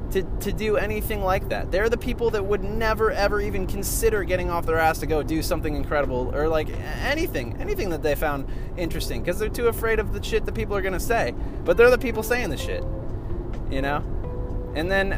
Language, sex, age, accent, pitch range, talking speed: English, male, 20-39, American, 115-160 Hz, 220 wpm